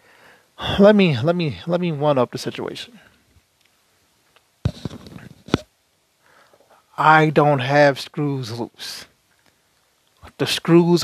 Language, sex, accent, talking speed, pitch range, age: English, male, American, 90 wpm, 150-200 Hz, 20-39